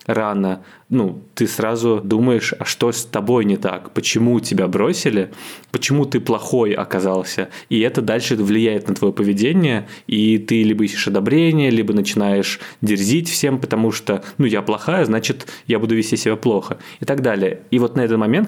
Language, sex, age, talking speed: Russian, male, 20-39, 170 wpm